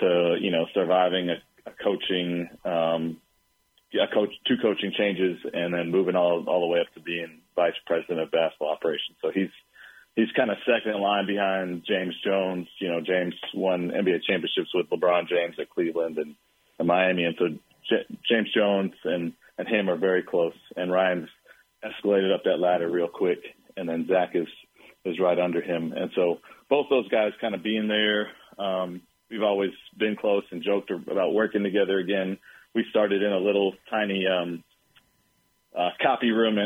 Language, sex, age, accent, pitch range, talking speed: English, male, 40-59, American, 85-100 Hz, 180 wpm